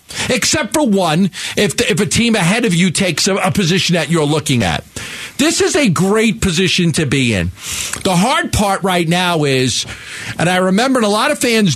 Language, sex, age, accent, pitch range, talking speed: English, male, 50-69, American, 175-240 Hz, 205 wpm